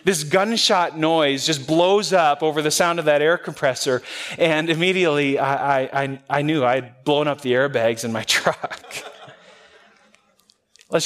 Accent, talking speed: American, 155 wpm